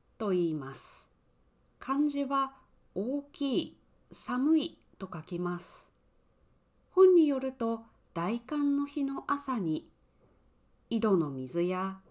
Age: 40-59